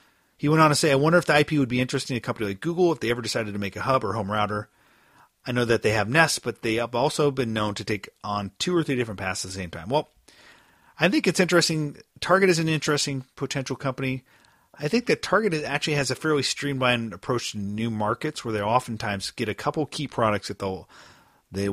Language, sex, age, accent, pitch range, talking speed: English, male, 40-59, American, 105-140 Hz, 240 wpm